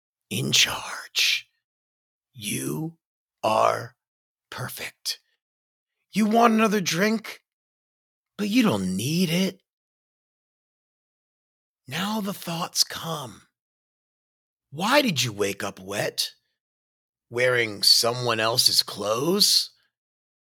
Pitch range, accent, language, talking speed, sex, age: 165-255 Hz, American, English, 80 wpm, male, 40-59